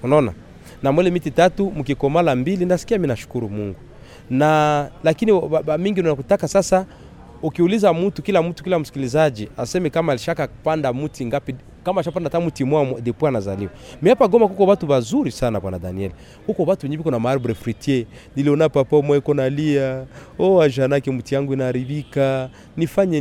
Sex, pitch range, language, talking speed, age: male, 125-175 Hz, Swahili, 165 wpm, 30-49